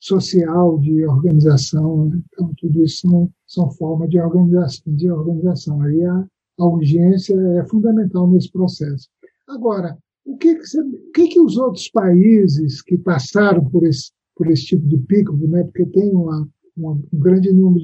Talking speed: 165 wpm